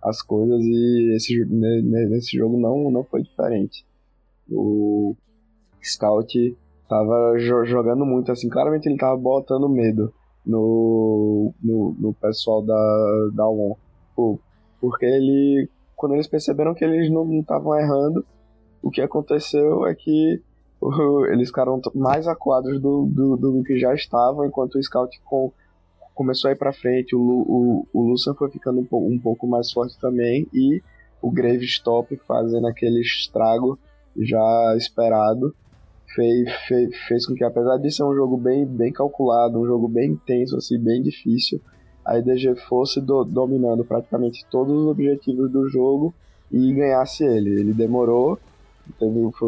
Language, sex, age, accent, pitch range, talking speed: Portuguese, male, 20-39, Brazilian, 115-135 Hz, 145 wpm